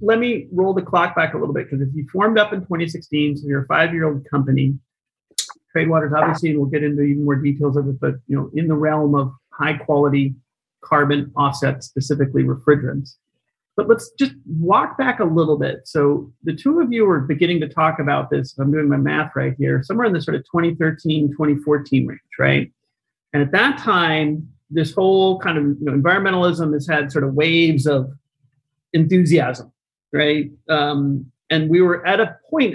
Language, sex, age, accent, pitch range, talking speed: English, male, 40-59, American, 140-165 Hz, 190 wpm